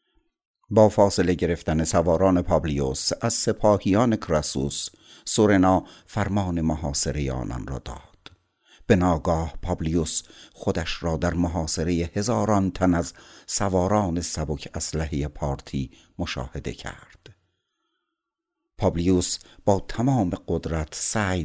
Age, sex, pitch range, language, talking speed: 60-79, male, 75-95 Hz, Persian, 100 wpm